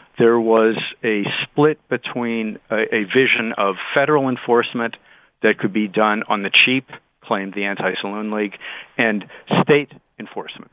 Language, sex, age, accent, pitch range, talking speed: English, male, 50-69, American, 100-120 Hz, 145 wpm